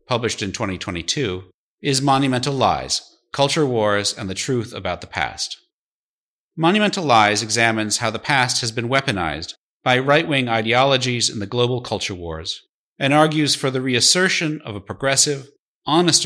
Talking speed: 150 wpm